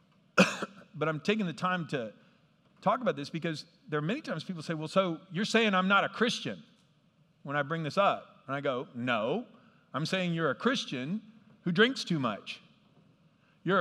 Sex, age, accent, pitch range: male, 50-69, American, 180-225 Hz